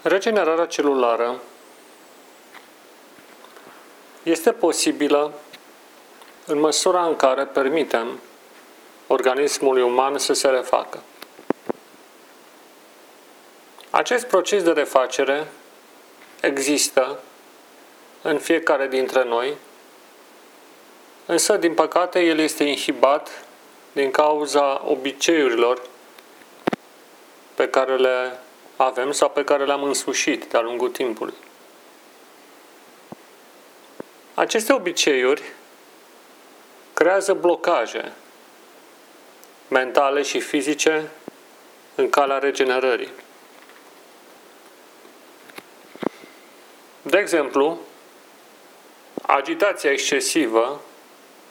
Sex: male